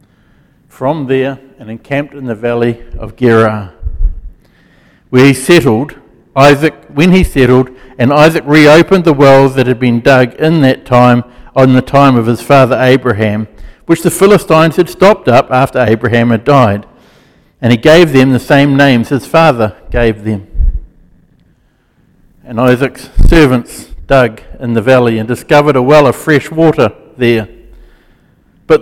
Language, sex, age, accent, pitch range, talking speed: English, male, 60-79, Australian, 115-150 Hz, 150 wpm